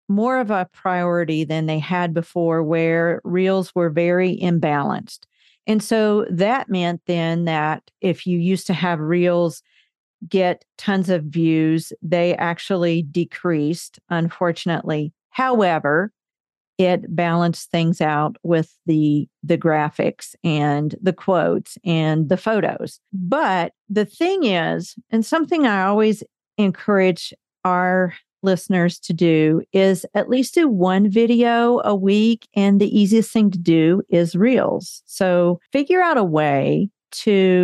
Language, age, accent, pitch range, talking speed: English, 50-69, American, 170-200 Hz, 130 wpm